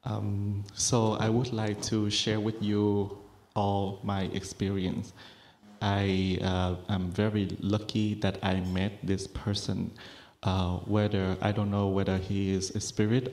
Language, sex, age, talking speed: English, male, 20-39, 145 wpm